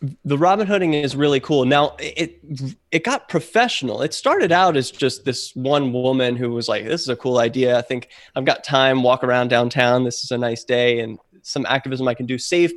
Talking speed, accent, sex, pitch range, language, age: 220 wpm, American, male, 125-175 Hz, English, 20-39